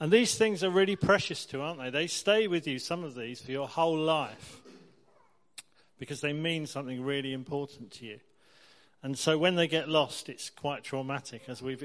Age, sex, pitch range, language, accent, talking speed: 40-59, male, 135-170 Hz, English, British, 195 wpm